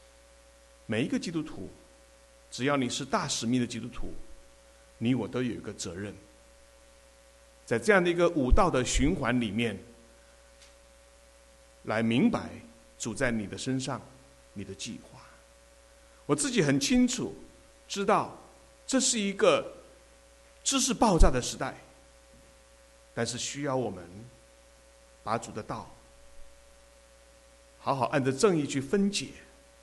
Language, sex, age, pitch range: English, male, 60-79, 95-135 Hz